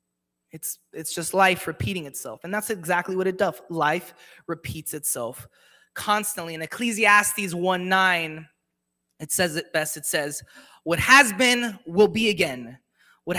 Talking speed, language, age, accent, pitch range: 145 wpm, English, 20-39, American, 170-235 Hz